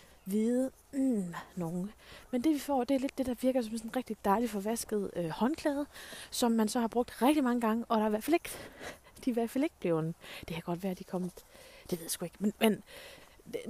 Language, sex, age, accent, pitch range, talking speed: Danish, female, 30-49, native, 190-245 Hz, 230 wpm